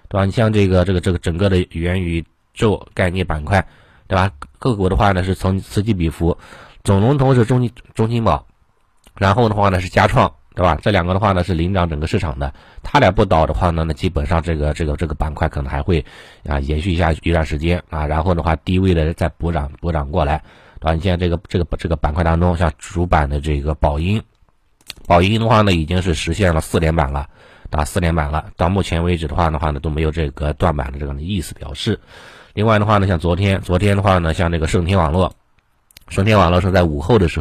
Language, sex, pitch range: Chinese, male, 80-95 Hz